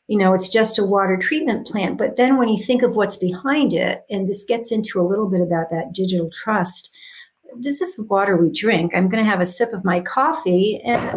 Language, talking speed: English, 235 wpm